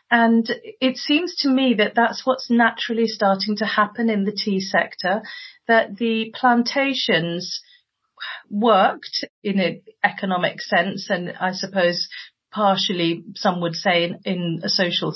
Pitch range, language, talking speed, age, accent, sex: 180-225 Hz, English, 135 wpm, 40-59, British, female